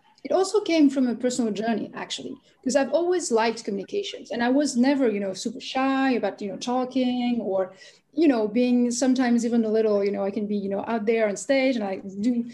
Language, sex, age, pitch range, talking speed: English, female, 30-49, 220-270 Hz, 225 wpm